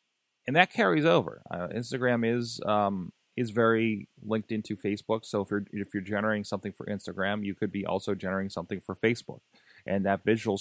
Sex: male